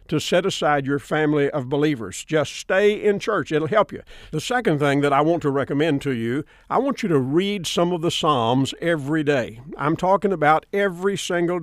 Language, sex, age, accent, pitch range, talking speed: English, male, 50-69, American, 145-200 Hz, 205 wpm